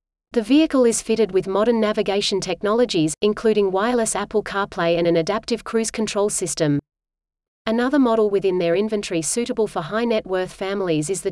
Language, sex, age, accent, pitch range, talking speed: English, female, 30-49, Australian, 180-220 Hz, 155 wpm